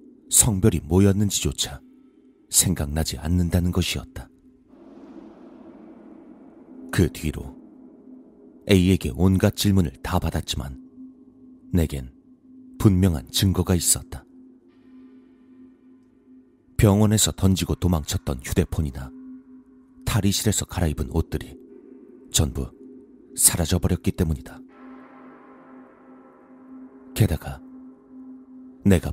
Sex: male